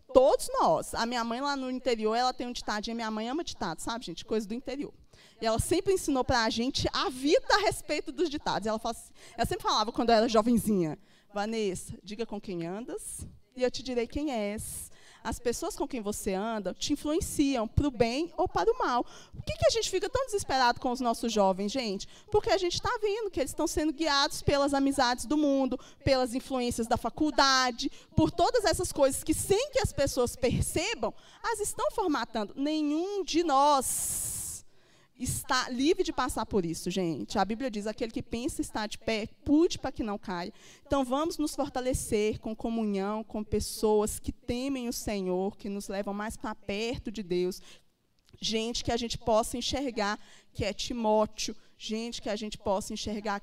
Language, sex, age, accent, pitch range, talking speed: Portuguese, female, 20-39, Brazilian, 210-290 Hz, 190 wpm